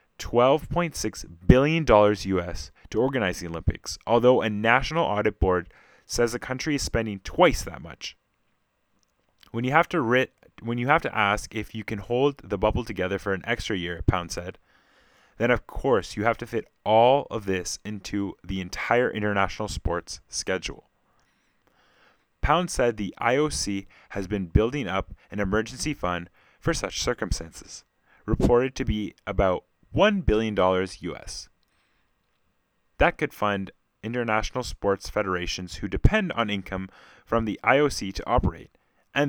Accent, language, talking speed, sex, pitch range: American, English, 145 wpm, male, 95-120 Hz